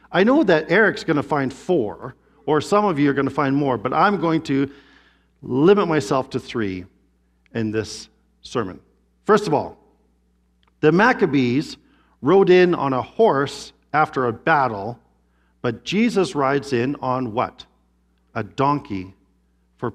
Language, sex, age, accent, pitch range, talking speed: English, male, 50-69, American, 125-190 Hz, 150 wpm